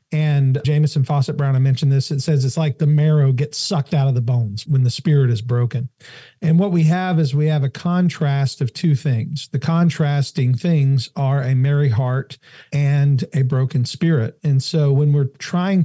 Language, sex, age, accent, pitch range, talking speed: English, male, 40-59, American, 135-165 Hz, 195 wpm